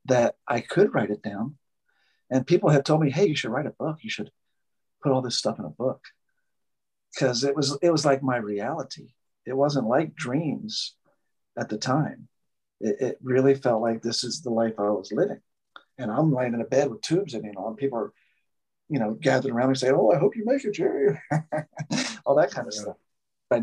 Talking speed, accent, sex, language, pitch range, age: 220 wpm, American, male, English, 120-160 Hz, 40-59